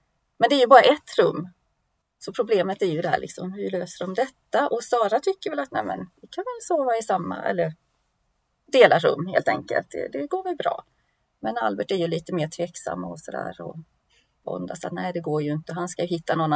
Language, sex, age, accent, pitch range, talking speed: Swedish, female, 30-49, native, 165-280 Hz, 225 wpm